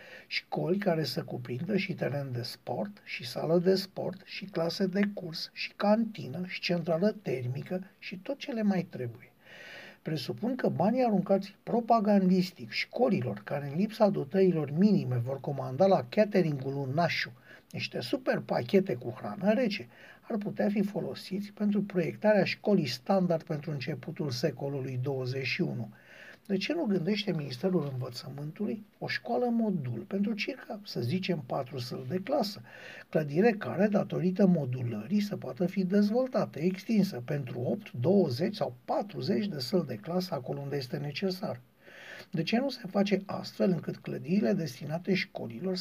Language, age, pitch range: Romanian, 60-79, 160-205 Hz